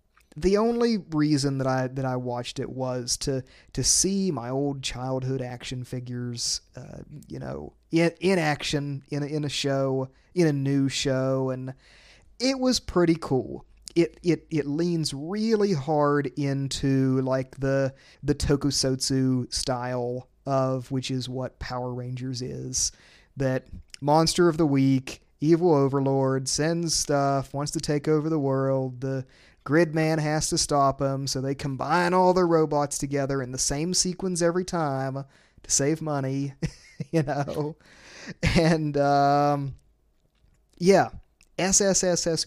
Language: English